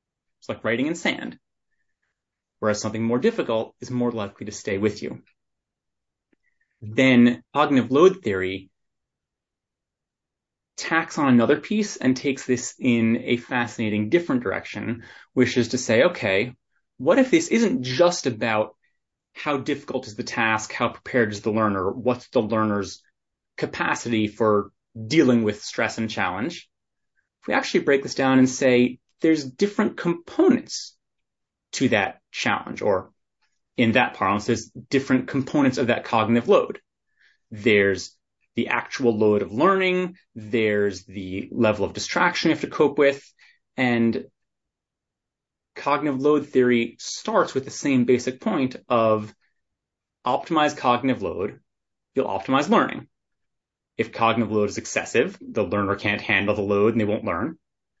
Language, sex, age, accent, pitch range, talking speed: English, male, 30-49, American, 110-135 Hz, 140 wpm